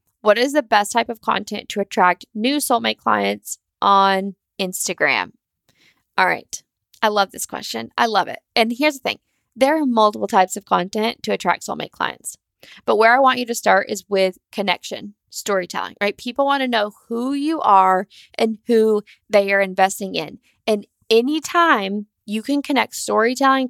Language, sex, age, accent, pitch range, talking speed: English, female, 10-29, American, 195-240 Hz, 170 wpm